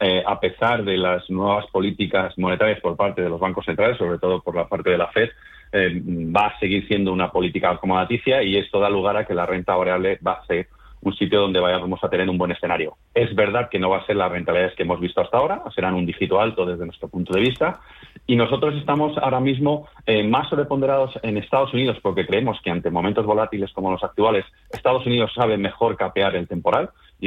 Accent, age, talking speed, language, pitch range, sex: Spanish, 30-49, 225 wpm, Spanish, 90-120 Hz, male